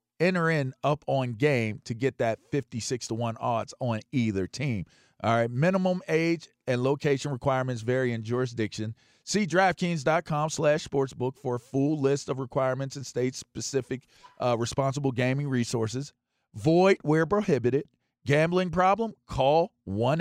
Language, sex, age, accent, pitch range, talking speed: English, male, 40-59, American, 120-160 Hz, 135 wpm